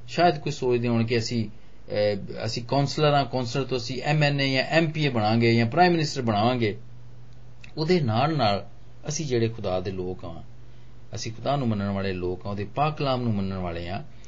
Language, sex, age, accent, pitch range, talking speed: Hindi, male, 40-59, native, 110-140 Hz, 155 wpm